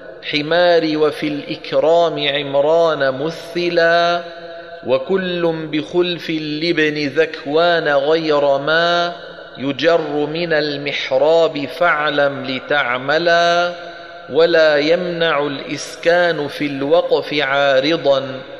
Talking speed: 70 wpm